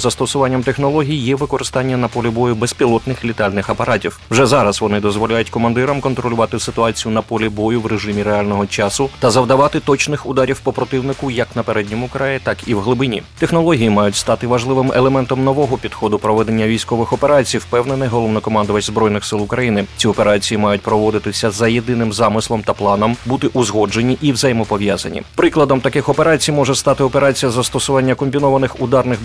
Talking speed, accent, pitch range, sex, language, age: 155 wpm, native, 110-135 Hz, male, Ukrainian, 30-49